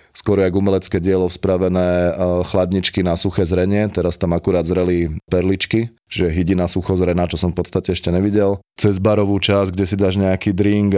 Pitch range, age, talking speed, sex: 90-95 Hz, 20-39, 175 wpm, male